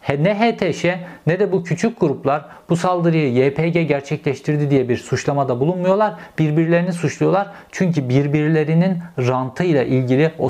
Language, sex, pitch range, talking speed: Turkish, male, 130-170 Hz, 130 wpm